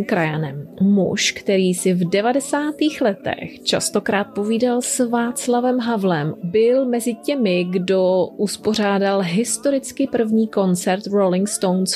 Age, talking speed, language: 30-49, 110 wpm, Czech